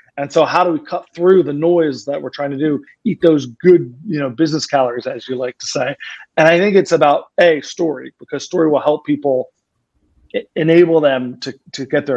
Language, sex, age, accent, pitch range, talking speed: English, male, 30-49, American, 135-175 Hz, 215 wpm